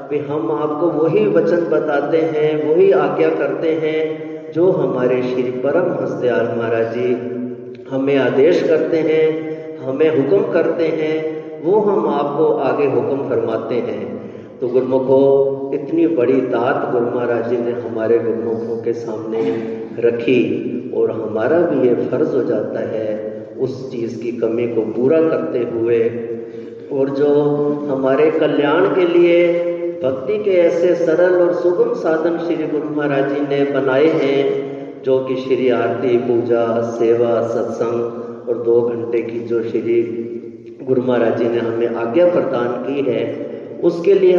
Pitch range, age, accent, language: 120-160 Hz, 50-69, native, Hindi